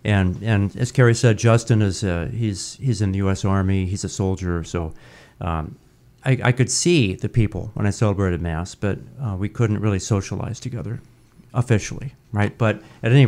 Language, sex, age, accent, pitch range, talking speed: English, male, 40-59, American, 100-125 Hz, 185 wpm